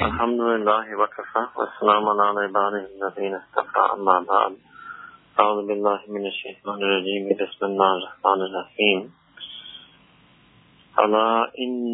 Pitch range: 95-110 Hz